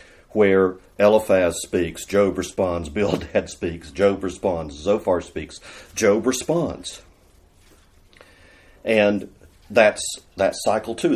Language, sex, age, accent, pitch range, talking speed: English, male, 50-69, American, 90-120 Hz, 95 wpm